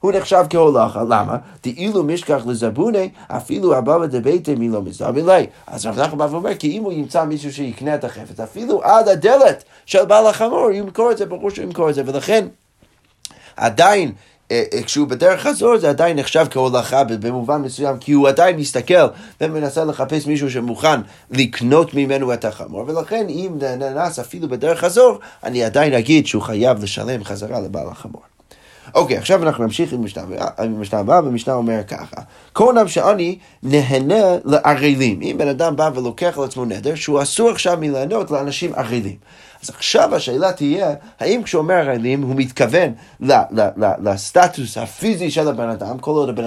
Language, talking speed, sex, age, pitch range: Hebrew, 165 wpm, male, 30-49, 125-175 Hz